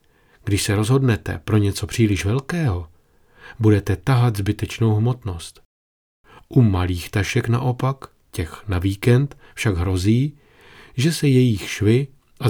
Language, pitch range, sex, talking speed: Czech, 95-120 Hz, male, 120 wpm